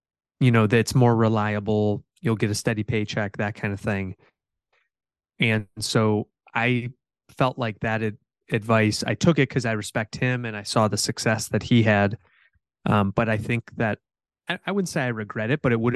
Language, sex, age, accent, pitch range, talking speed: English, male, 20-39, American, 105-120 Hz, 190 wpm